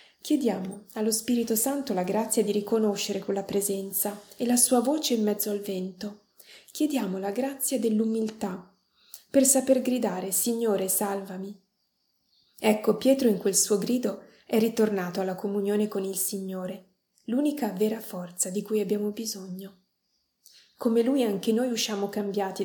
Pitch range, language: 195-235 Hz, Italian